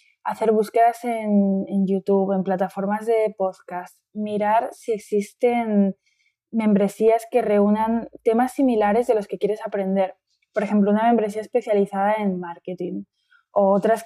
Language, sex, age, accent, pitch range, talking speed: Spanish, female, 20-39, Spanish, 200-230 Hz, 130 wpm